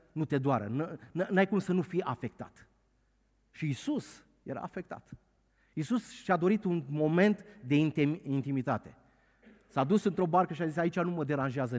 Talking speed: 160 wpm